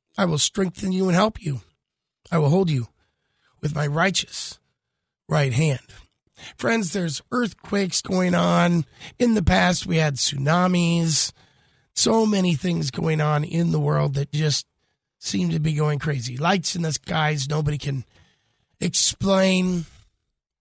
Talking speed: 145 wpm